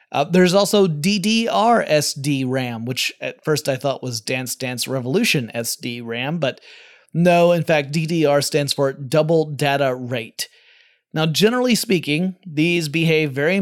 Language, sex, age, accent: English, male, 30-49, American